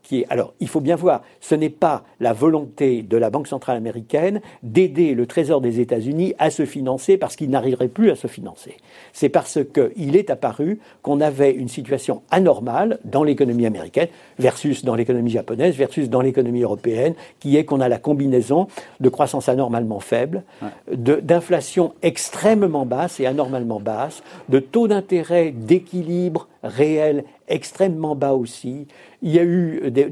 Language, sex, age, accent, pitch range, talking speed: French, male, 60-79, French, 130-175 Hz, 165 wpm